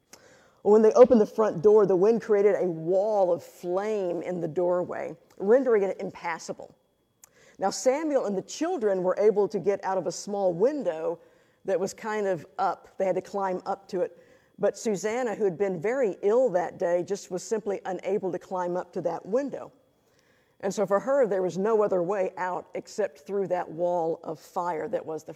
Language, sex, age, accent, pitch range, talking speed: English, female, 50-69, American, 185-220 Hz, 195 wpm